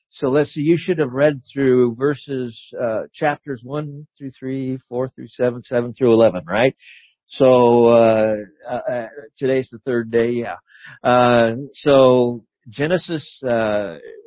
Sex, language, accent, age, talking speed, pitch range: male, English, American, 50-69, 145 wpm, 115-140 Hz